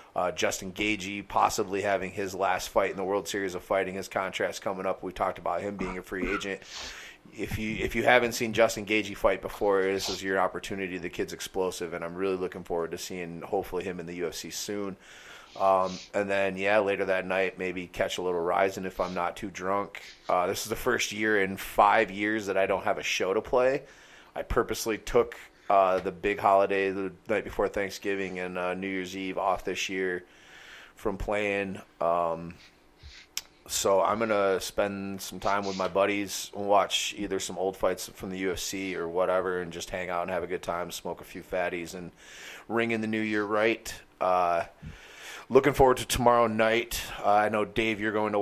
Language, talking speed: English, 205 wpm